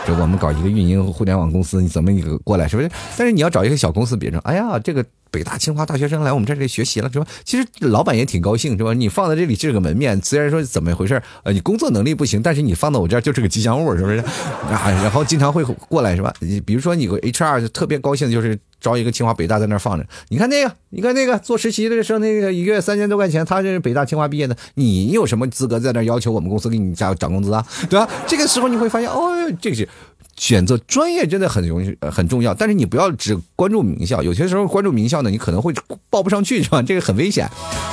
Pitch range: 95-155 Hz